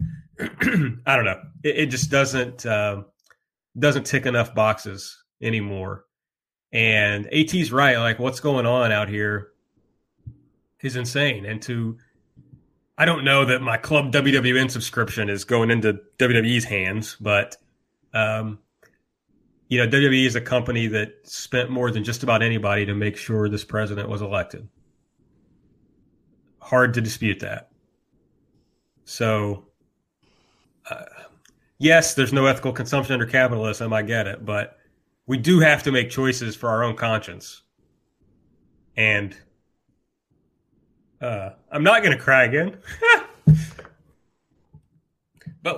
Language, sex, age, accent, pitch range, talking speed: English, male, 30-49, American, 110-140 Hz, 125 wpm